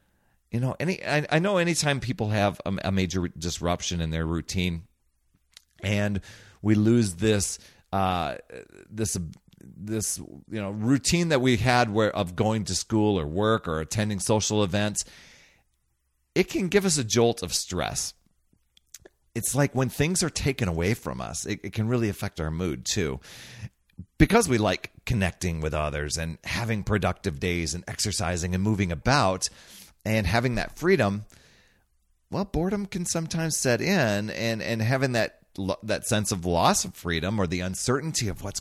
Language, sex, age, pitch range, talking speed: English, male, 40-59, 90-115 Hz, 165 wpm